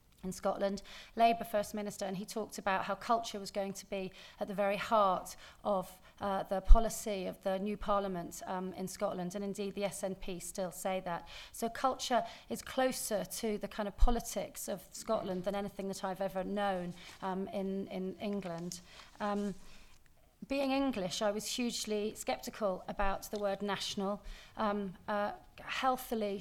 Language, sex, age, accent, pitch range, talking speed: English, female, 30-49, British, 190-210 Hz, 160 wpm